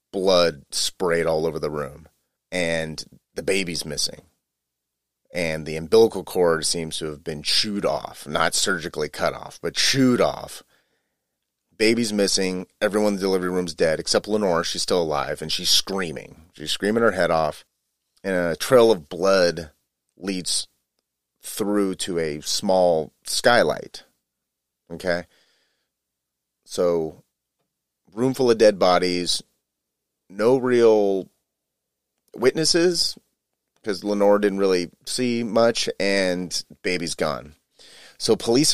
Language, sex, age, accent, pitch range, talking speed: English, male, 30-49, American, 75-100 Hz, 125 wpm